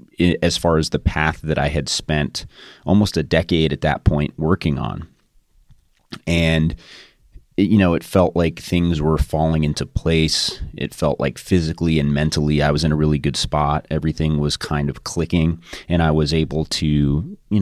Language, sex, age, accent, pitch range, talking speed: English, male, 30-49, American, 75-90 Hz, 175 wpm